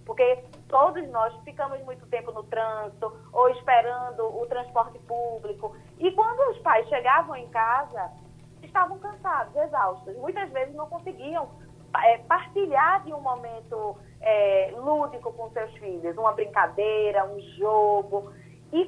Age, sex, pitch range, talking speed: 20-39, female, 205-305 Hz, 125 wpm